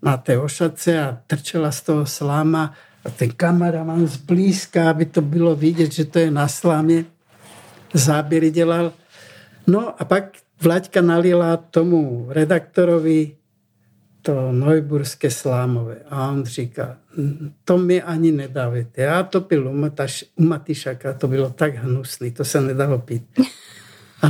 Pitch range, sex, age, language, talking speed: 140-180 Hz, male, 60-79, Czech, 135 wpm